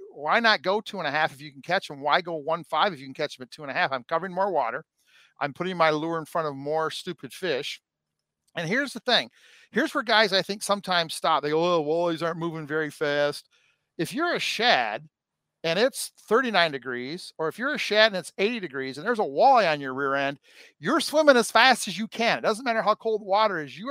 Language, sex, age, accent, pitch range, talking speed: English, male, 50-69, American, 150-210 Hz, 250 wpm